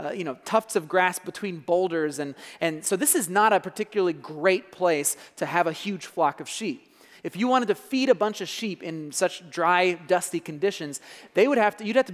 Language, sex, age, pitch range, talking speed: English, male, 30-49, 165-205 Hz, 225 wpm